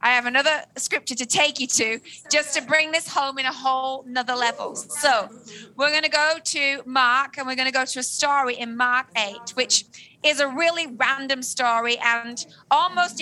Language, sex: English, female